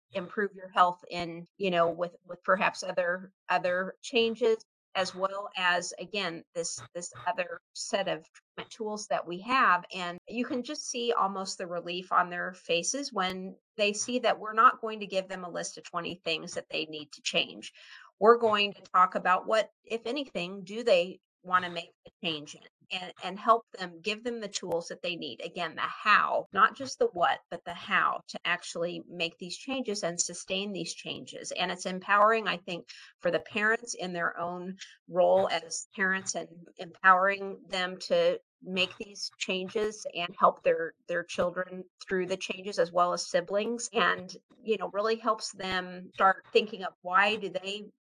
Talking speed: 185 wpm